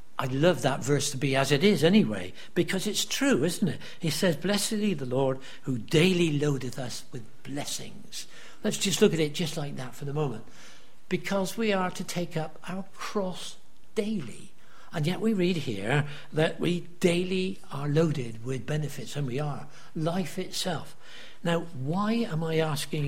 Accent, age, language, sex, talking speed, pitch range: British, 60-79, English, male, 180 wpm, 135-175 Hz